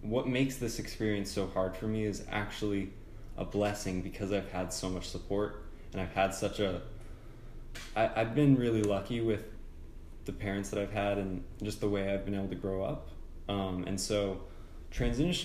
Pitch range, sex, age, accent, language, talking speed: 100-125 Hz, male, 20-39, American, English, 185 wpm